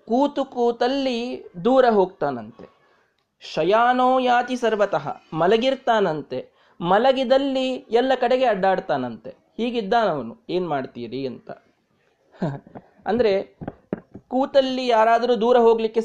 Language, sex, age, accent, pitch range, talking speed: Kannada, male, 30-49, native, 165-240 Hz, 80 wpm